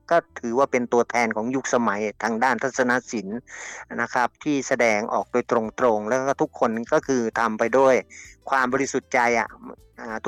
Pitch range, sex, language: 115-130 Hz, male, Thai